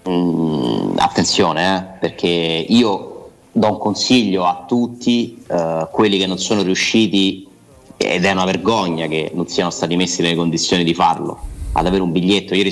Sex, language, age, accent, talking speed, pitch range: male, Italian, 30-49, native, 160 wpm, 85-110 Hz